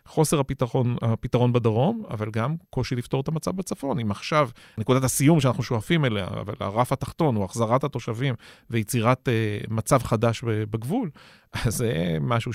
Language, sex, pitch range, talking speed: Hebrew, male, 110-145 Hz, 150 wpm